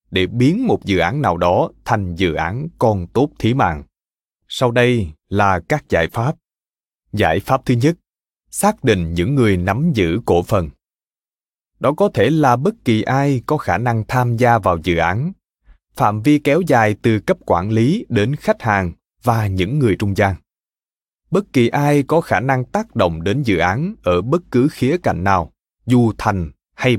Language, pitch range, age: Vietnamese, 95-135 Hz, 20-39